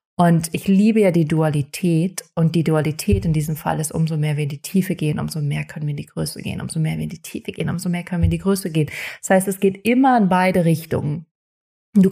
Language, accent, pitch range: German, German, 165-220 Hz